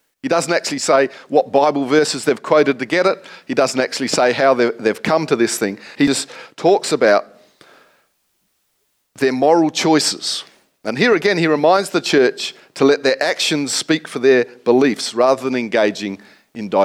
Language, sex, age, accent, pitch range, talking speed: English, male, 50-69, Australian, 120-170 Hz, 170 wpm